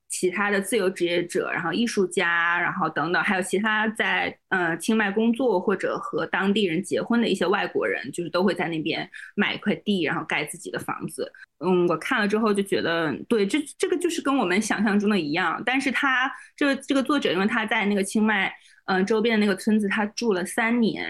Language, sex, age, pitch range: Chinese, female, 20-39, 185-245 Hz